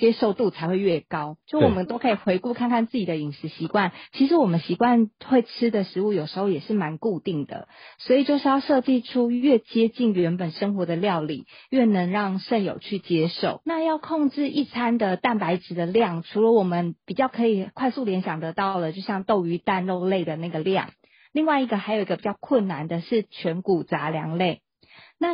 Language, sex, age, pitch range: Chinese, female, 30-49, 175-240 Hz